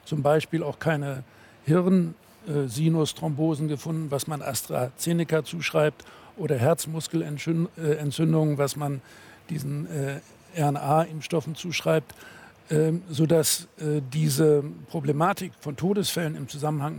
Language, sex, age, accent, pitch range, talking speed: German, male, 60-79, German, 145-170 Hz, 95 wpm